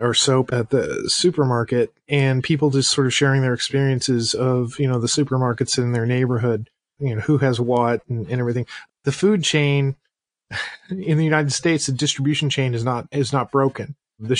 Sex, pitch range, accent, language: male, 125-150 Hz, American, English